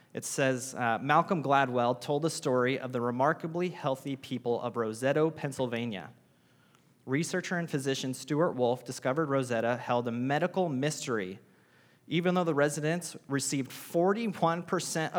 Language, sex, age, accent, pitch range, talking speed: English, male, 30-49, American, 125-155 Hz, 130 wpm